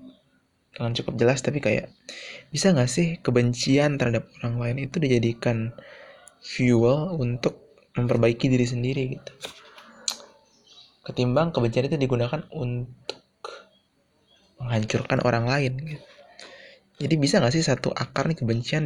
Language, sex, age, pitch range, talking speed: Indonesian, male, 20-39, 115-145 Hz, 115 wpm